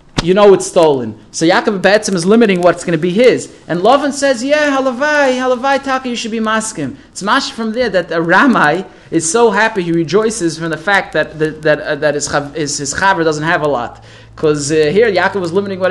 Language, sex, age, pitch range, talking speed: English, male, 20-39, 155-200 Hz, 225 wpm